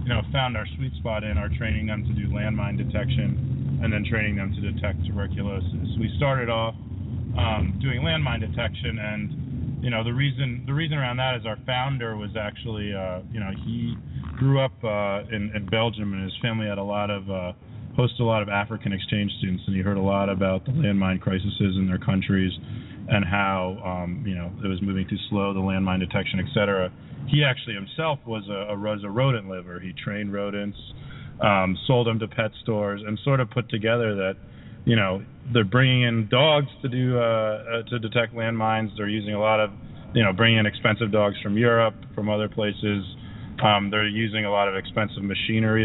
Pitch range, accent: 100-115 Hz, American